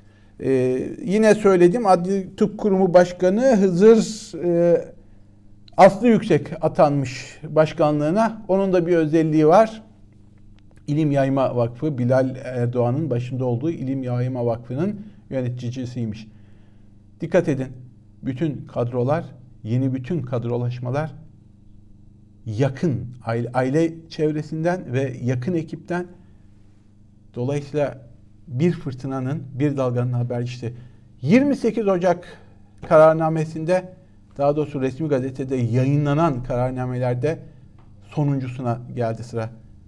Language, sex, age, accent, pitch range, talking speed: Turkish, male, 50-69, native, 115-165 Hz, 85 wpm